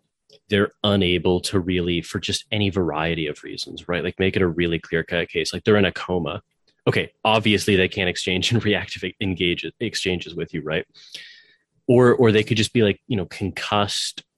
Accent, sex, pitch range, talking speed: American, male, 90-110 Hz, 190 wpm